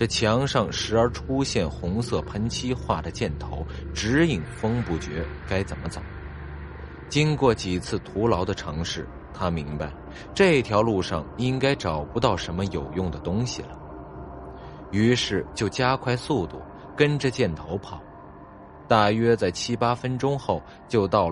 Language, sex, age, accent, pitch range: Chinese, male, 20-39, native, 80-120 Hz